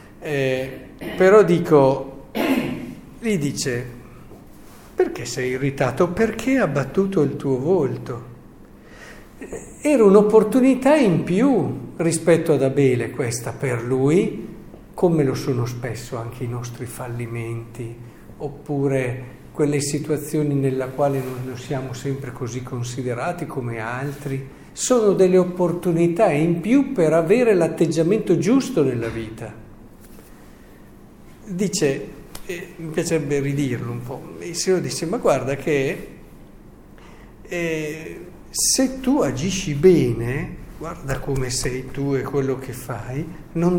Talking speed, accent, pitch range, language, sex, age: 110 wpm, native, 130-175 Hz, Italian, male, 50-69